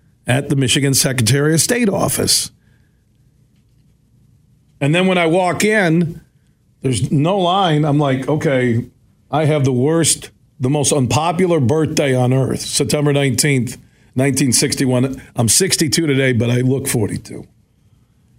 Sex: male